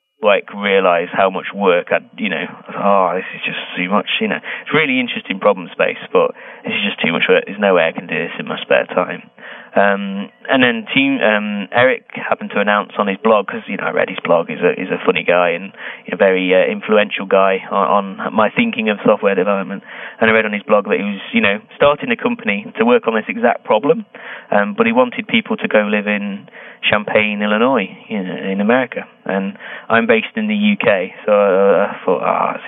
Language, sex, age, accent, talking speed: English, male, 20-39, British, 230 wpm